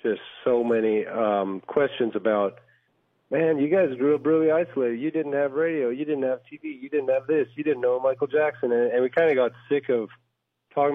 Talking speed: 215 wpm